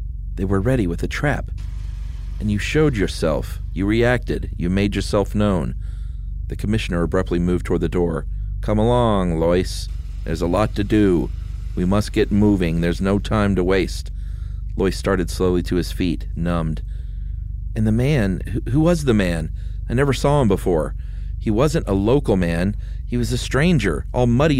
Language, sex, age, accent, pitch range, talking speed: English, male, 40-59, American, 85-105 Hz, 170 wpm